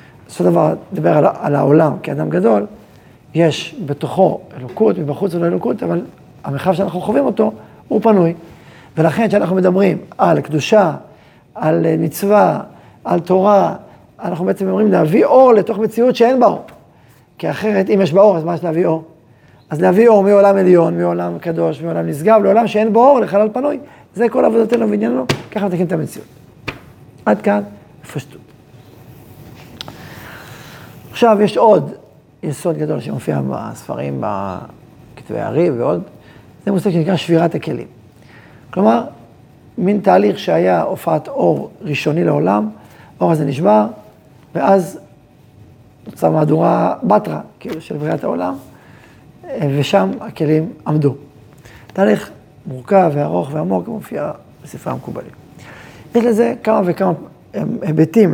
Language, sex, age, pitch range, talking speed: Hebrew, male, 40-59, 145-200 Hz, 130 wpm